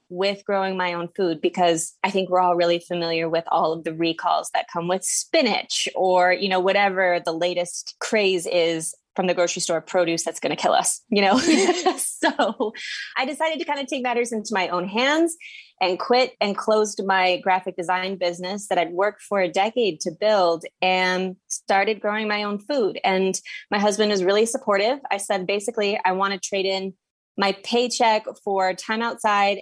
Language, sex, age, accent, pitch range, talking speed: English, female, 20-39, American, 180-215 Hz, 190 wpm